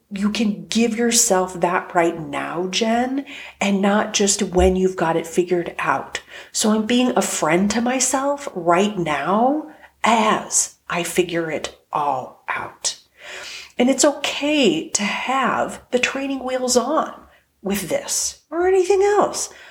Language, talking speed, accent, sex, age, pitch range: English, 140 wpm, American, female, 40-59, 180-250 Hz